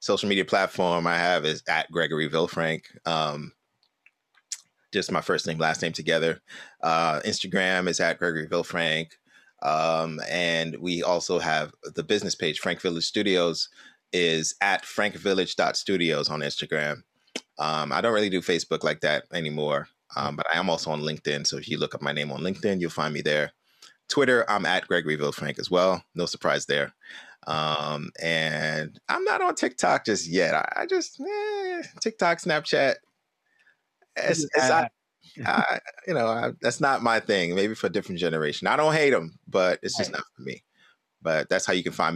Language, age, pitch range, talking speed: English, 30-49, 80-100 Hz, 175 wpm